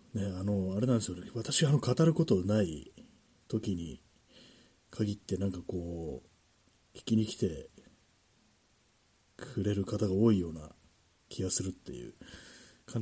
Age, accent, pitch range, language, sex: 40-59, native, 90-120 Hz, Japanese, male